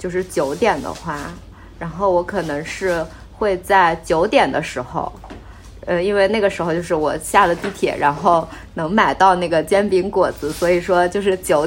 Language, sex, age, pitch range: Chinese, female, 20-39, 160-195 Hz